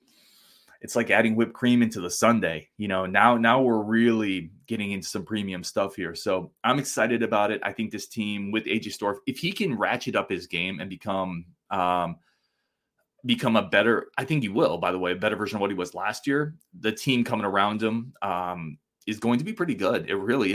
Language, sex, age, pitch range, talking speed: English, male, 20-39, 100-130 Hz, 220 wpm